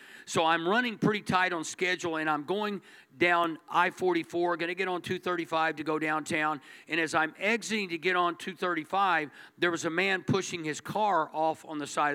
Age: 50-69